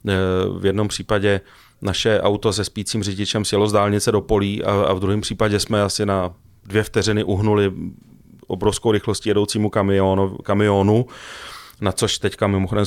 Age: 30-49